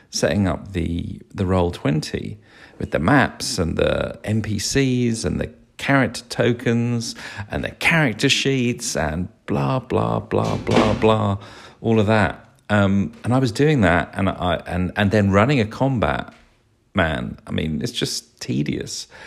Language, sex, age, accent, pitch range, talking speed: English, male, 40-59, British, 95-125 Hz, 150 wpm